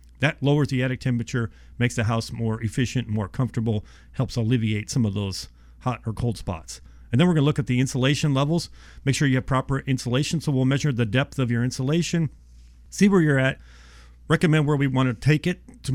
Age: 40-59